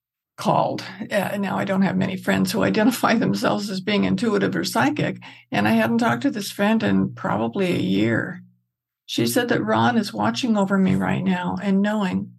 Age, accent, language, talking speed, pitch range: 60-79, American, English, 190 wpm, 175-225 Hz